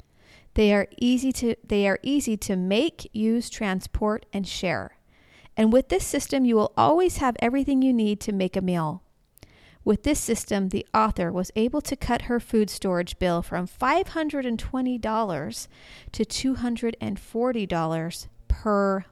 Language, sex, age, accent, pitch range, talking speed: English, female, 40-59, American, 185-245 Hz, 145 wpm